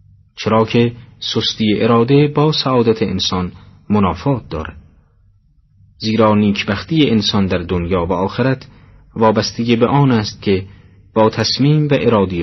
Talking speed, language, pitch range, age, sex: 120 wpm, Persian, 95-120 Hz, 40-59, male